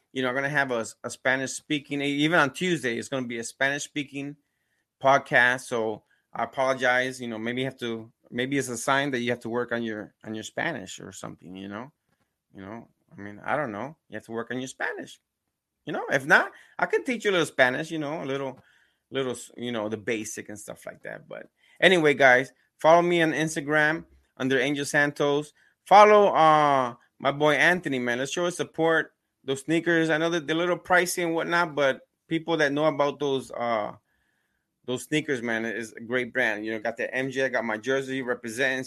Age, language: 20-39, English